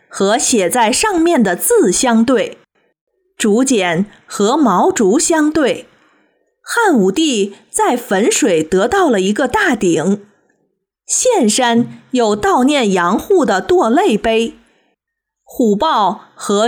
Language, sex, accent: Chinese, female, native